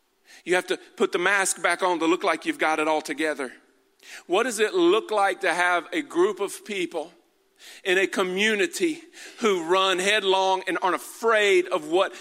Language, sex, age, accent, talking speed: English, male, 40-59, American, 185 wpm